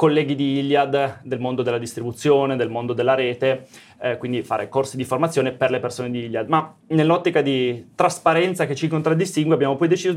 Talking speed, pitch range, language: 190 wpm, 125-155 Hz, Italian